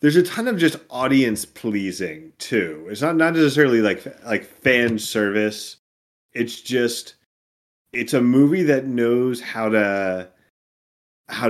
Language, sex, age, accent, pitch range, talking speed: English, male, 30-49, American, 100-125 Hz, 135 wpm